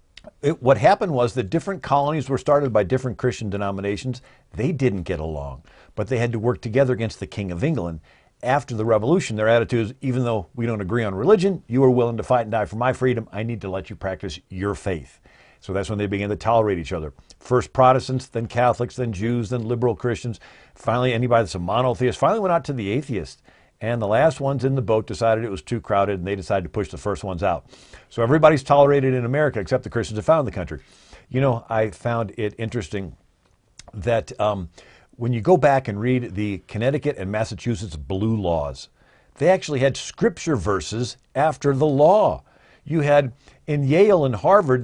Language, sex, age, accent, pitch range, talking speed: English, male, 50-69, American, 100-130 Hz, 205 wpm